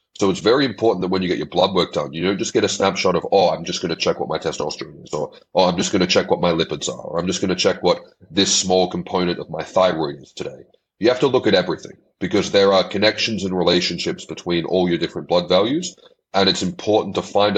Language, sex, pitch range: English, male, 90-110 Hz